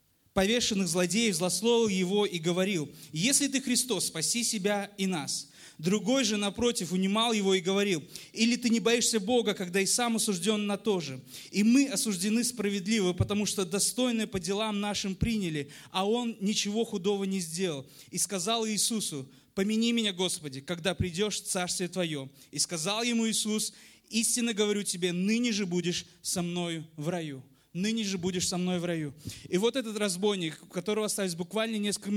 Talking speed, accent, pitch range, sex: 170 wpm, native, 180-220 Hz, male